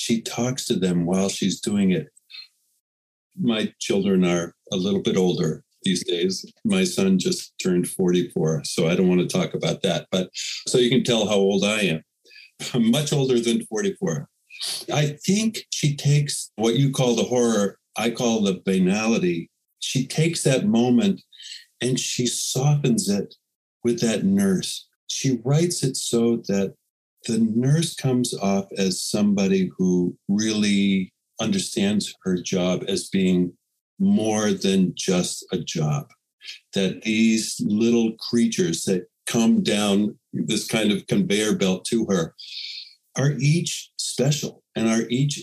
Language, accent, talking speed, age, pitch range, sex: English, American, 145 wpm, 50-69, 100-165 Hz, male